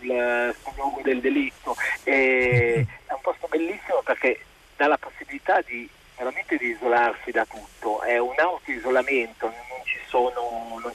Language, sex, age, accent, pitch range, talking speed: Italian, male, 40-59, native, 120-135 Hz, 140 wpm